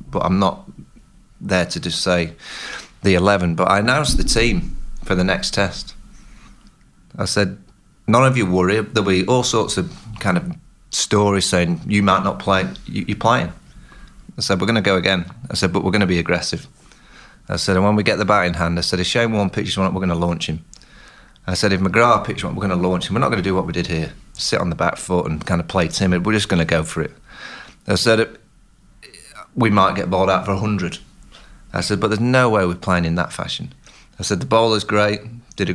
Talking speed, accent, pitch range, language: 240 wpm, British, 90-110 Hz, English